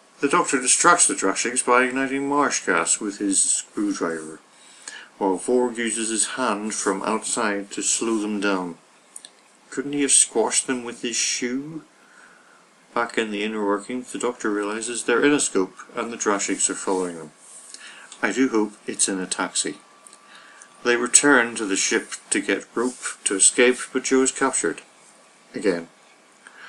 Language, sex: English, male